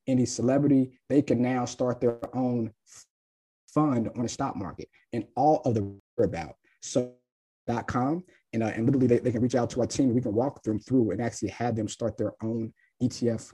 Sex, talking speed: male, 210 wpm